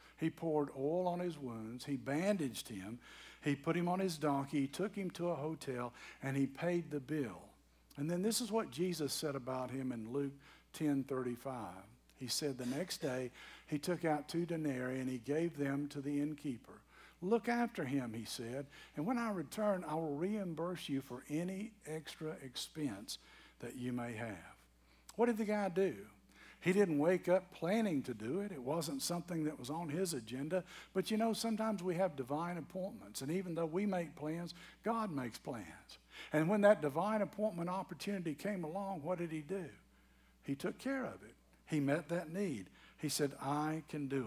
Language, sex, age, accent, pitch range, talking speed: English, male, 60-79, American, 130-180 Hz, 190 wpm